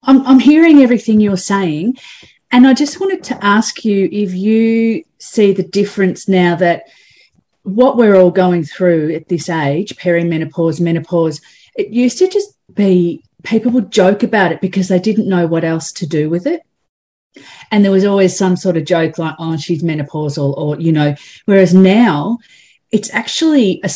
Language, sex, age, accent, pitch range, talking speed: English, female, 40-59, Australian, 170-205 Hz, 175 wpm